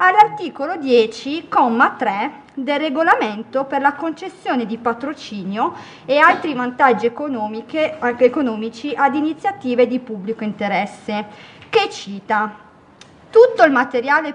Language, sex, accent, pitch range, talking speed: Italian, female, native, 215-265 Hz, 100 wpm